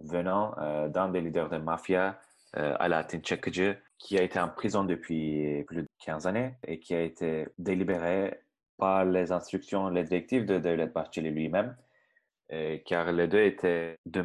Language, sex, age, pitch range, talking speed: Turkish, male, 30-49, 80-95 Hz, 170 wpm